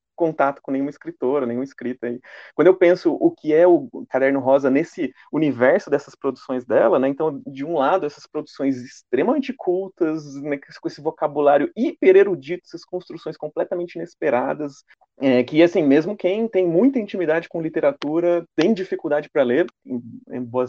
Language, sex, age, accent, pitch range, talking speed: Portuguese, male, 30-49, Brazilian, 140-185 Hz, 155 wpm